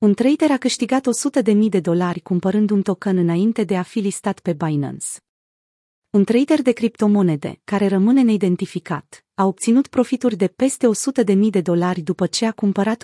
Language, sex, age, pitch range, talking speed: Romanian, female, 30-49, 180-225 Hz, 175 wpm